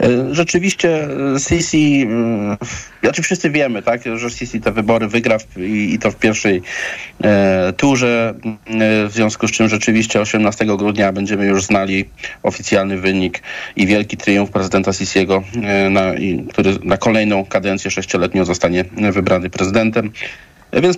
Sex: male